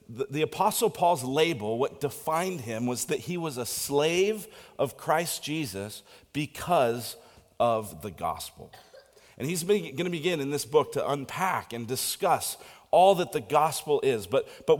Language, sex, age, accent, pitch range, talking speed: English, male, 40-59, American, 110-175 Hz, 160 wpm